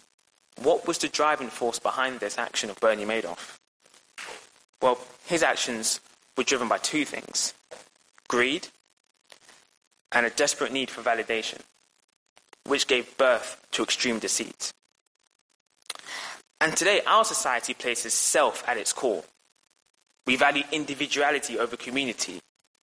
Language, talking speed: English, 120 wpm